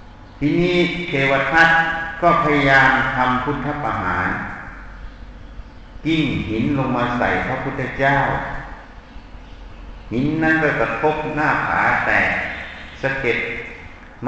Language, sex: Thai, male